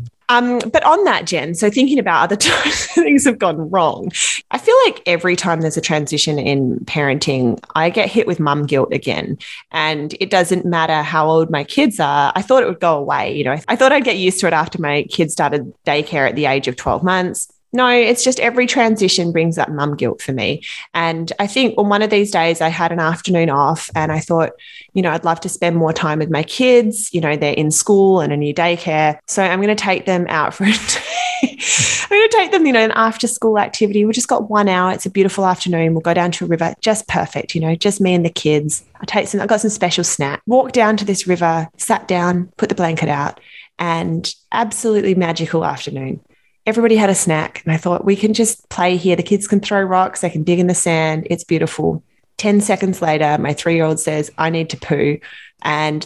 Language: English